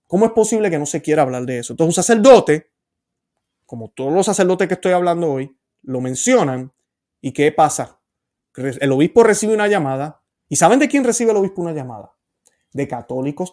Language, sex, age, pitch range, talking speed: Spanish, male, 30-49, 145-210 Hz, 185 wpm